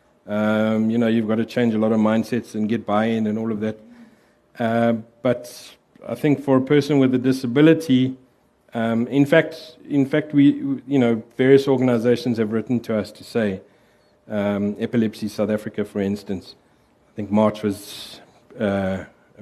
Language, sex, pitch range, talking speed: English, male, 105-125 Hz, 170 wpm